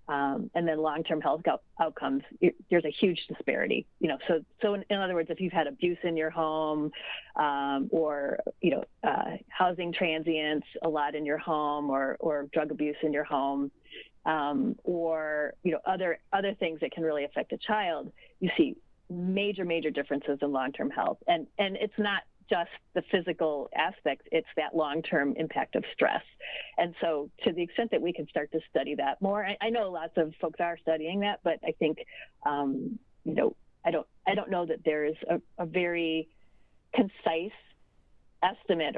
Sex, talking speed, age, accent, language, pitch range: female, 185 wpm, 30-49, American, English, 155-200 Hz